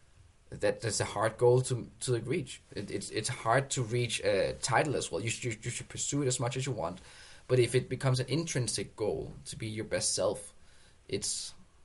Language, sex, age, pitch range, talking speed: English, male, 20-39, 105-130 Hz, 210 wpm